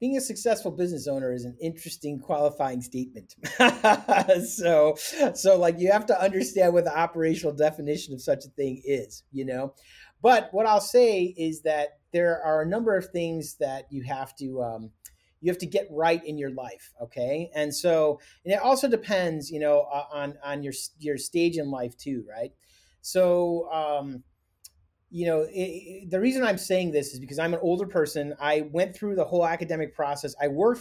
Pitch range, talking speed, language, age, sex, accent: 135-175 Hz, 180 wpm, English, 30-49, male, American